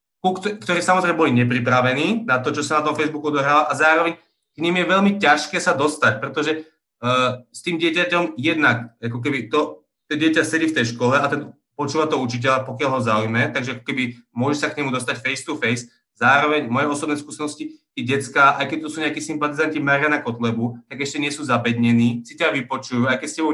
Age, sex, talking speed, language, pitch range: 30-49, male, 205 wpm, Slovak, 130-160 Hz